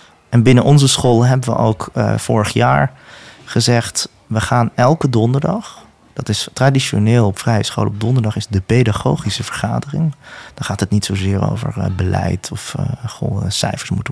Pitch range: 105-135 Hz